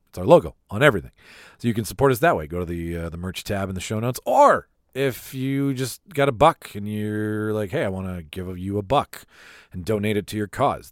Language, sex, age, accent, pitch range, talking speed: English, male, 40-59, American, 90-125 Hz, 260 wpm